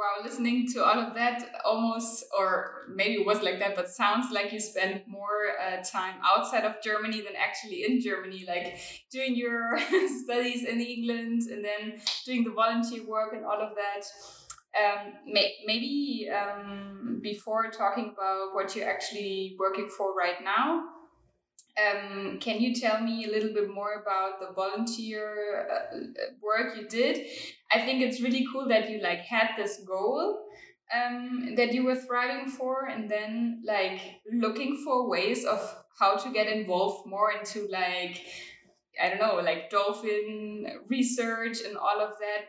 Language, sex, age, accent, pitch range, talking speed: English, female, 10-29, German, 200-245 Hz, 160 wpm